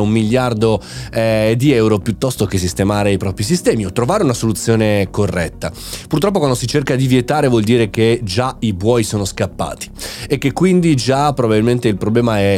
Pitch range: 105-150 Hz